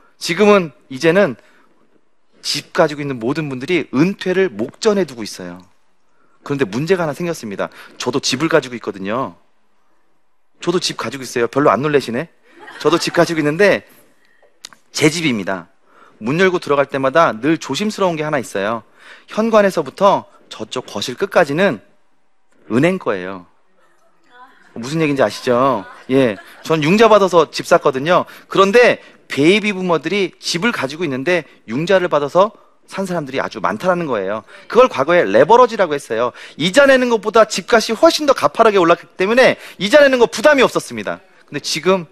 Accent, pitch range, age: native, 145-215 Hz, 30-49